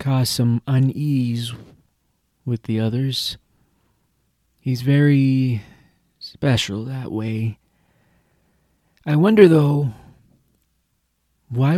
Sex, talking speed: male, 75 wpm